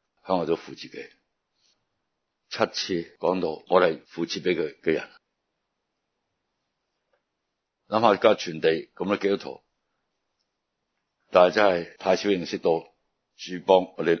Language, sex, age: Chinese, male, 60-79